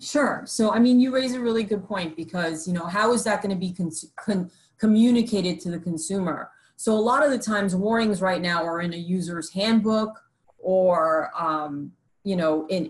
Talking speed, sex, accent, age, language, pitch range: 195 wpm, female, American, 30-49, English, 170-215 Hz